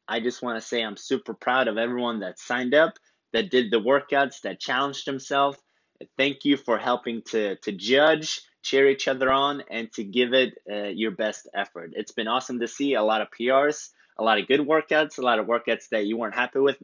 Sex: male